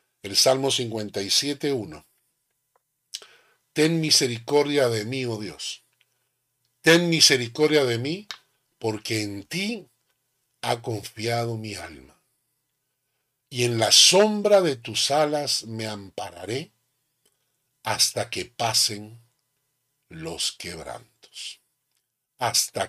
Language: Spanish